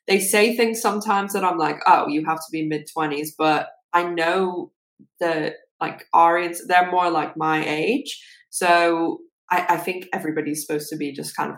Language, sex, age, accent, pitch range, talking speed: English, female, 10-29, British, 155-190 Hz, 180 wpm